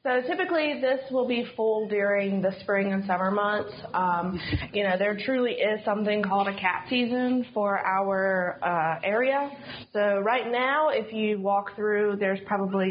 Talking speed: 165 wpm